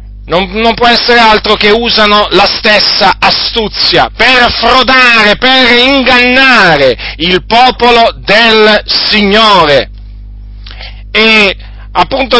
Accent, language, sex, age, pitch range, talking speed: native, Italian, male, 40-59, 195-240 Hz, 95 wpm